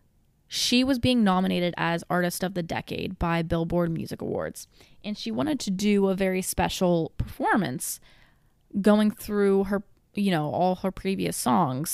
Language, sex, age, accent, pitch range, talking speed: English, female, 20-39, American, 165-195 Hz, 155 wpm